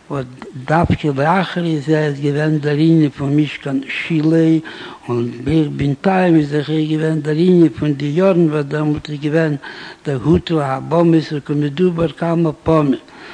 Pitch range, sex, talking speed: 140-160 Hz, male, 110 wpm